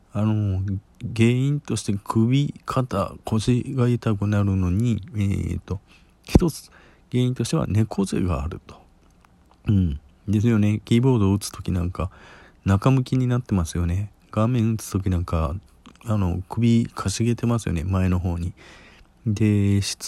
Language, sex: Japanese, male